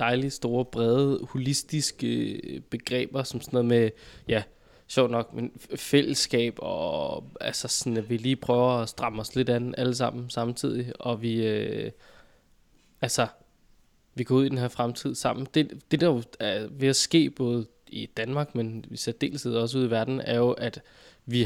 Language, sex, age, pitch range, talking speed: Danish, male, 20-39, 115-135 Hz, 175 wpm